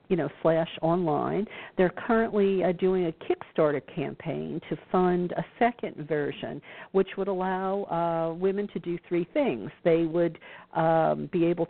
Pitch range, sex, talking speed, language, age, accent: 165-195 Hz, female, 155 wpm, English, 50-69, American